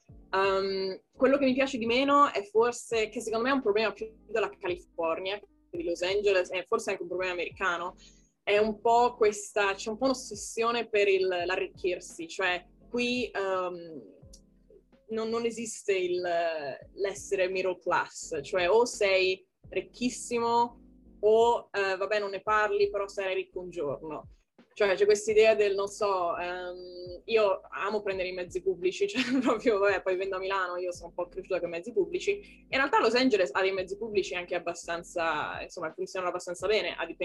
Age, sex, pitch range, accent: 20-39, female, 180-230 Hz, native